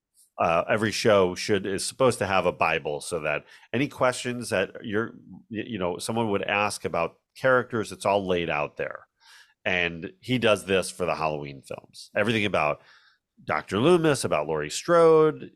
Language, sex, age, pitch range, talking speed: English, male, 40-59, 85-125 Hz, 165 wpm